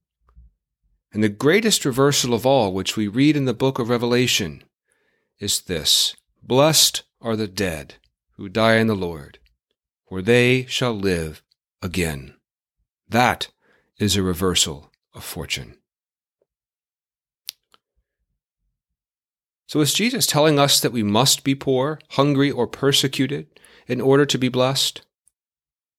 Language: English